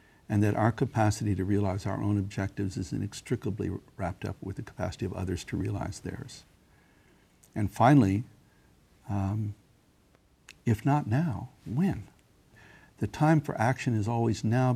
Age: 60-79